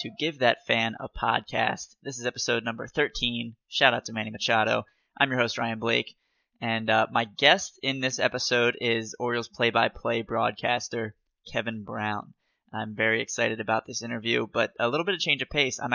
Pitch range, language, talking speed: 115-135 Hz, English, 185 wpm